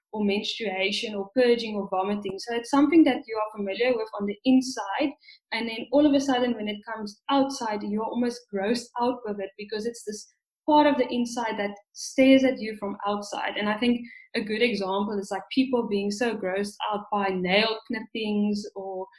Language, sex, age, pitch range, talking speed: English, female, 10-29, 205-250 Hz, 195 wpm